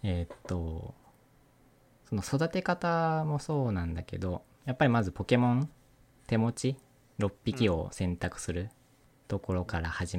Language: Japanese